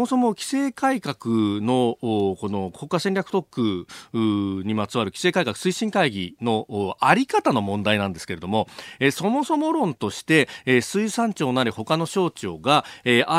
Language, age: Japanese, 40-59